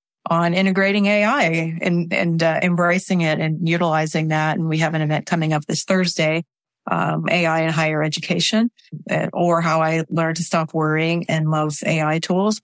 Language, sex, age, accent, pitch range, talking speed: English, female, 30-49, American, 160-180 Hz, 175 wpm